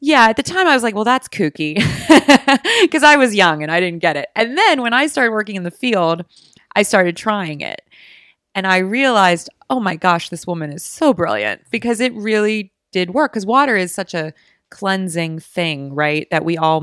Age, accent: 30-49, American